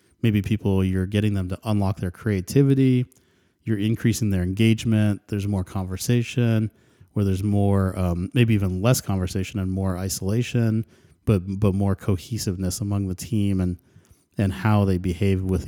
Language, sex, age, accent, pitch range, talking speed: English, male, 30-49, American, 95-110 Hz, 155 wpm